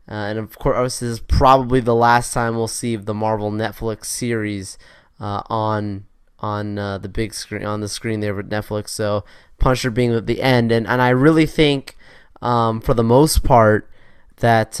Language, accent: English, American